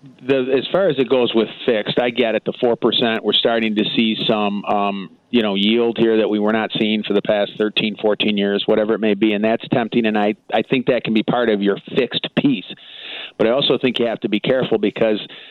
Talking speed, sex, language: 250 wpm, male, English